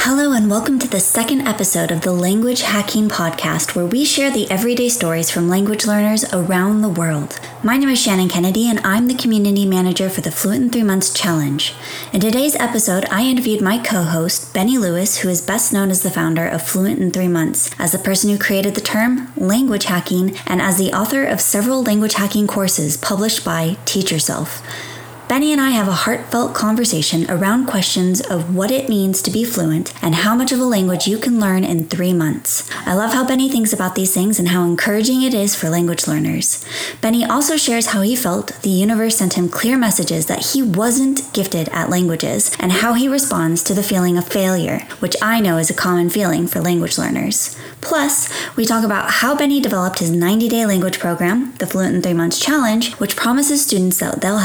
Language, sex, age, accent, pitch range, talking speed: English, female, 20-39, American, 180-230 Hz, 205 wpm